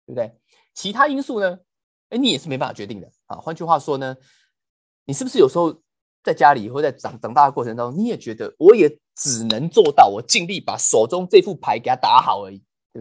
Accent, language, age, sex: native, Chinese, 20-39, male